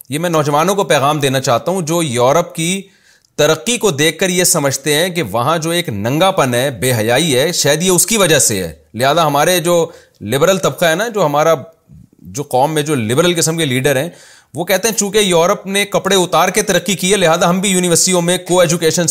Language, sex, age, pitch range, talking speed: Urdu, male, 30-49, 145-195 Hz, 225 wpm